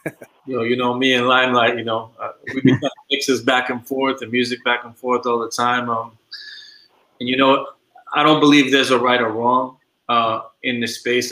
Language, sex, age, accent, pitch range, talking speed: English, male, 30-49, American, 115-130 Hz, 210 wpm